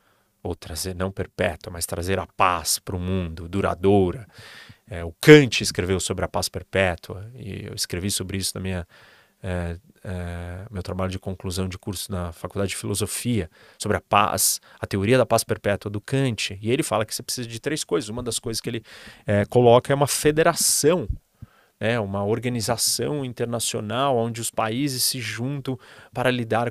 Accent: Brazilian